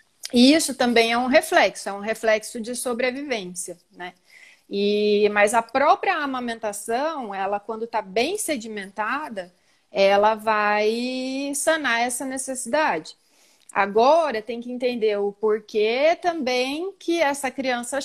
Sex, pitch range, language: female, 210-270 Hz, Portuguese